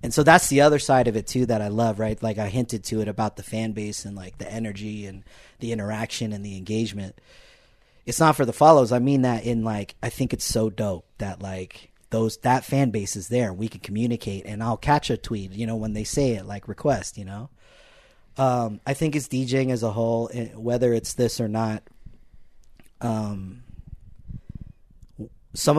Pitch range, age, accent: 100-120 Hz, 30-49, American